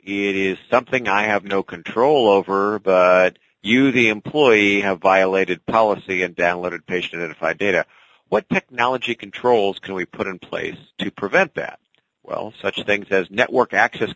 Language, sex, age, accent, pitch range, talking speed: English, male, 40-59, American, 95-120 Hz, 155 wpm